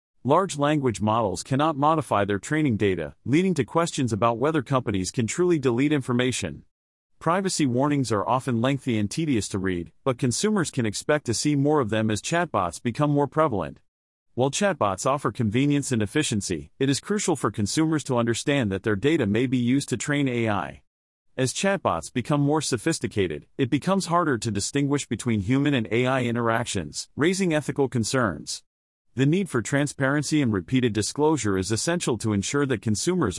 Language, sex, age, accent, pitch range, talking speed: English, male, 40-59, American, 110-150 Hz, 170 wpm